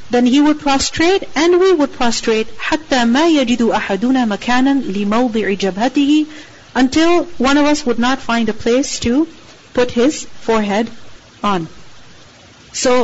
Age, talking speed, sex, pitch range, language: 40-59, 140 wpm, female, 210-265 Hz, English